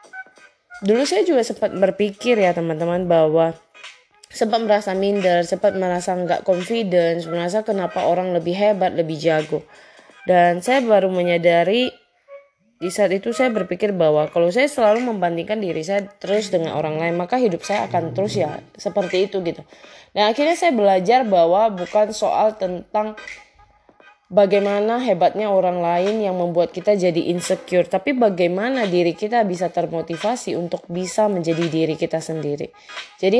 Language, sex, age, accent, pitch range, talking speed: Indonesian, female, 20-39, native, 170-210 Hz, 145 wpm